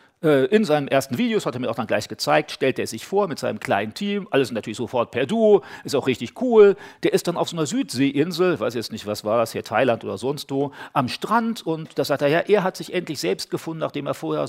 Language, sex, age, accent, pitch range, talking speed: German, male, 40-59, German, 120-190 Hz, 255 wpm